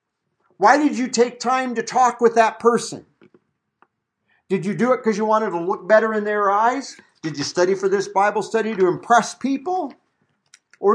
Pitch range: 165-240 Hz